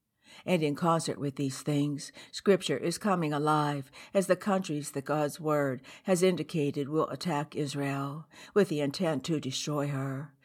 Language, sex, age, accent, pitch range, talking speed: English, female, 60-79, American, 140-170 Hz, 155 wpm